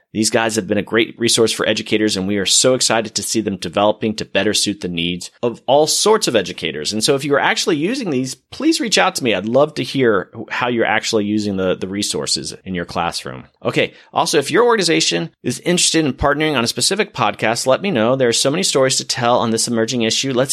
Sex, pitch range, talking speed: male, 110-135 Hz, 245 wpm